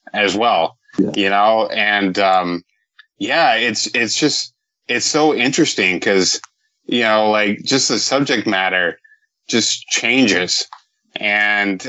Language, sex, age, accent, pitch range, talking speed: English, male, 20-39, American, 100-135 Hz, 120 wpm